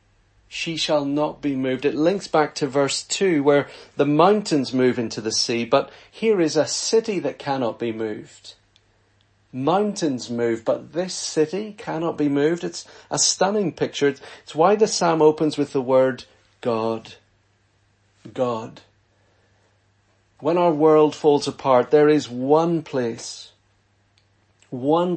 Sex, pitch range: male, 120-175 Hz